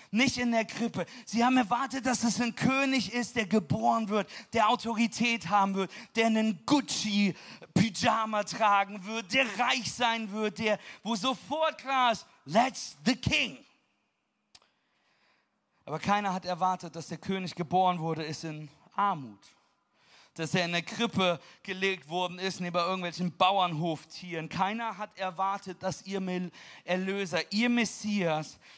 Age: 40-59